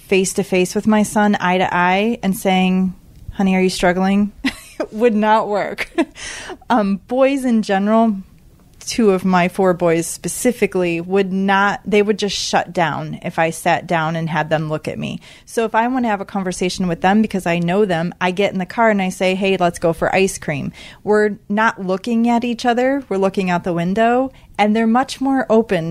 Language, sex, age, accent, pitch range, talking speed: English, female, 30-49, American, 180-220 Hz, 205 wpm